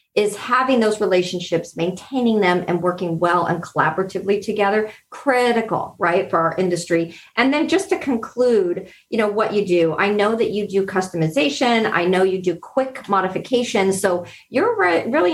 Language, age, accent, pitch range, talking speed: English, 40-59, American, 185-245 Hz, 165 wpm